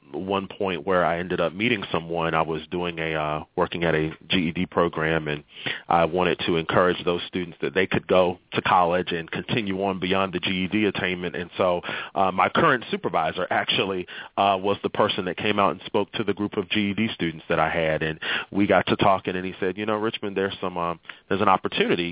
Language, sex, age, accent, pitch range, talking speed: English, male, 30-49, American, 85-105 Hz, 215 wpm